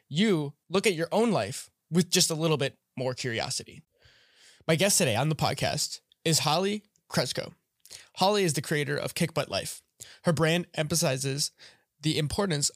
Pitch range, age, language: 145-175 Hz, 20-39, English